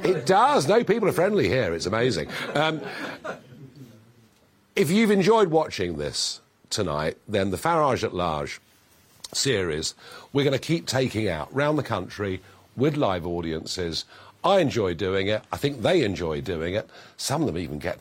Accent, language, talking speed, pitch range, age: British, English, 165 wpm, 105-165 Hz, 50-69